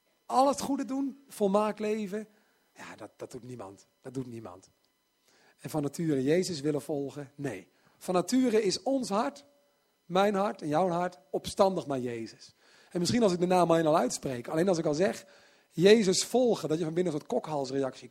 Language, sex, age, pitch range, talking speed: Dutch, male, 40-59, 140-205 Hz, 190 wpm